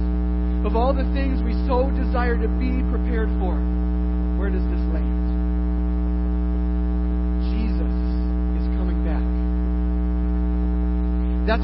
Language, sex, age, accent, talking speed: English, male, 40-59, American, 105 wpm